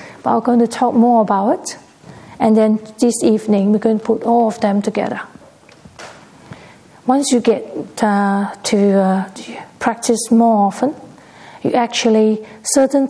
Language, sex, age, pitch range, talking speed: English, female, 40-59, 215-245 Hz, 145 wpm